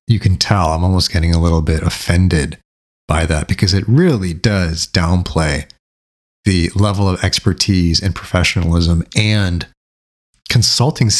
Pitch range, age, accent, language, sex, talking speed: 80-100 Hz, 30-49, American, English, male, 135 wpm